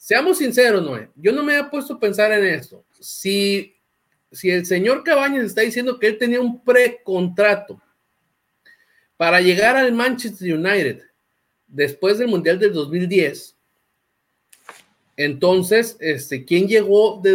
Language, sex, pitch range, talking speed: Spanish, male, 155-220 Hz, 130 wpm